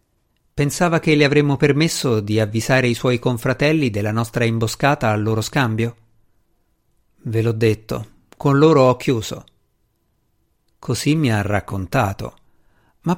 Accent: native